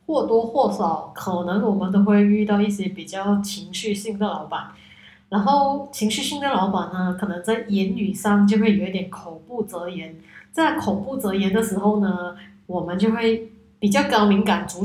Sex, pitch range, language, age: female, 195-260 Hz, Chinese, 20-39